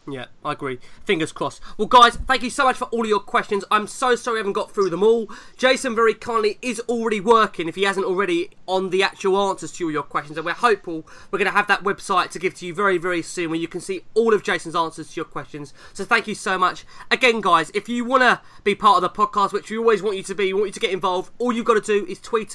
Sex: male